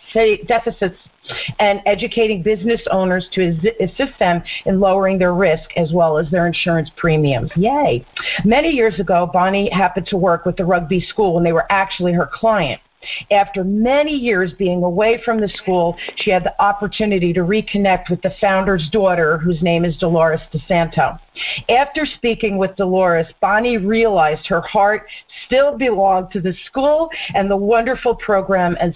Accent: American